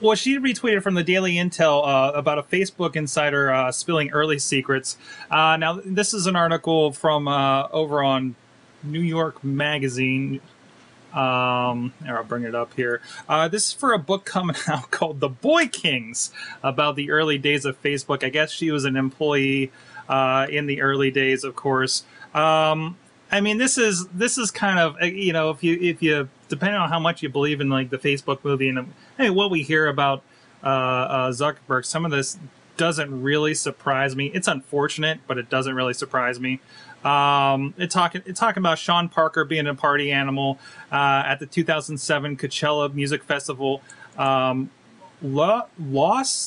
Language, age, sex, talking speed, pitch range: English, 30-49, male, 180 wpm, 135-170 Hz